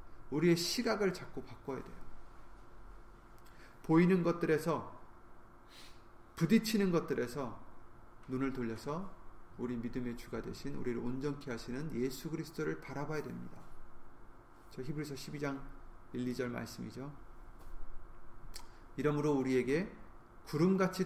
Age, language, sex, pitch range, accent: 30-49, Korean, male, 115-160 Hz, native